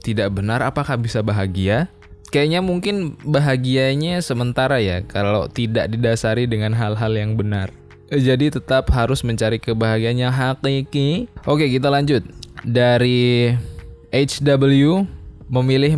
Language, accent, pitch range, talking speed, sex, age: Indonesian, native, 105-130 Hz, 115 wpm, male, 10-29